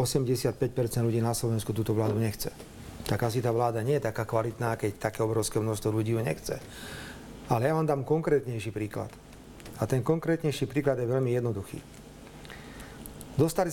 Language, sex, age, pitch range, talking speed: Slovak, male, 40-59, 115-145 Hz, 155 wpm